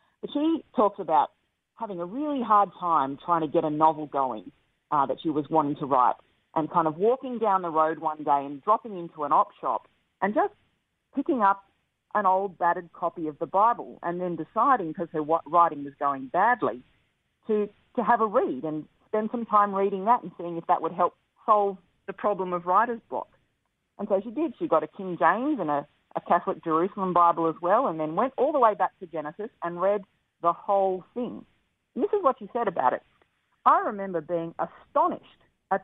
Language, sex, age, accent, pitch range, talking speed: English, female, 40-59, Australian, 160-210 Hz, 205 wpm